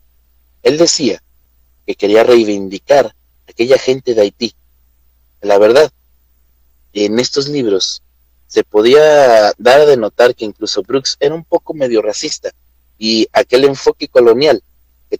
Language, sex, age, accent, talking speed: Spanish, male, 40-59, Mexican, 130 wpm